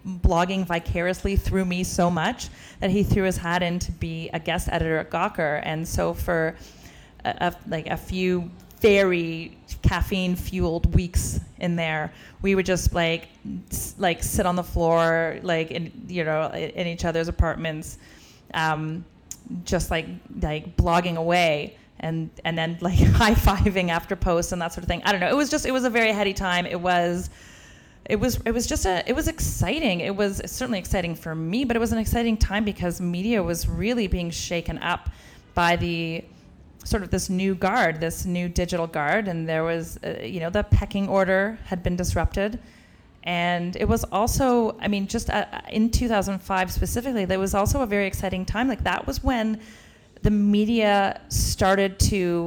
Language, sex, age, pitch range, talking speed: English, female, 30-49, 165-200 Hz, 185 wpm